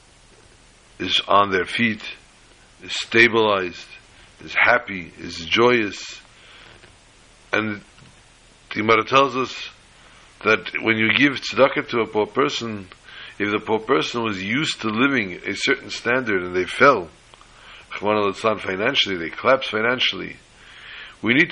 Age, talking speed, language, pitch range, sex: 60-79, 130 wpm, English, 100-120 Hz, male